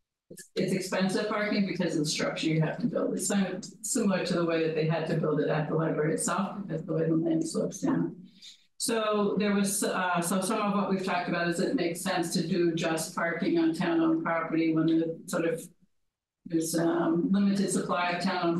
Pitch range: 165-200 Hz